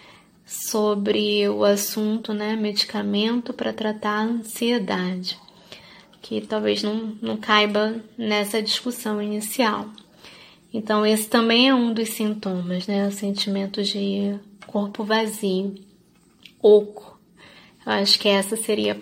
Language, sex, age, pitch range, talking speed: Portuguese, female, 20-39, 205-225 Hz, 115 wpm